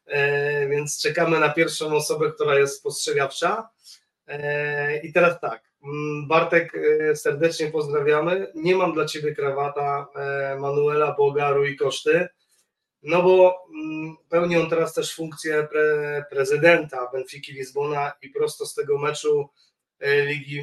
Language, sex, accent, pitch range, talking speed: Polish, male, native, 140-200 Hz, 120 wpm